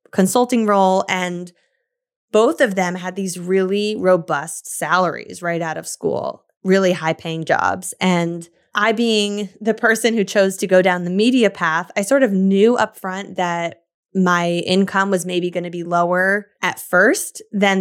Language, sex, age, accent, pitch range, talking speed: English, female, 10-29, American, 175-210 Hz, 165 wpm